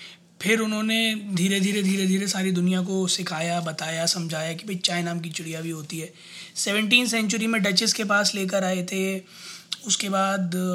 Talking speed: 180 wpm